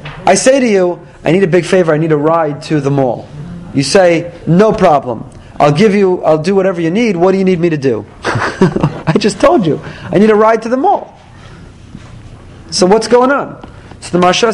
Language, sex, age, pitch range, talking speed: English, male, 30-49, 135-190 Hz, 220 wpm